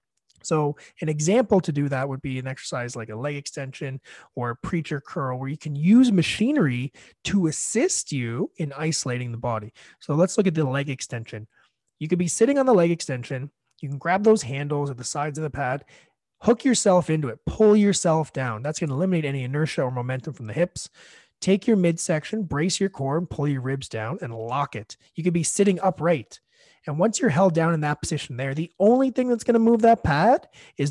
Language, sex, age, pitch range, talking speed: English, male, 30-49, 135-190 Hz, 215 wpm